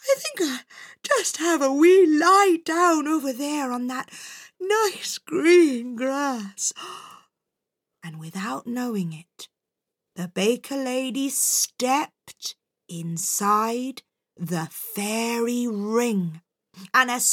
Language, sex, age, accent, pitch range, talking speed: English, female, 30-49, British, 195-295 Hz, 105 wpm